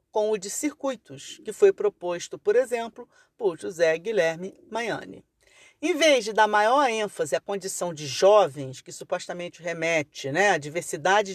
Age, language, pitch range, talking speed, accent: 40-59, Portuguese, 175-250 Hz, 155 wpm, Brazilian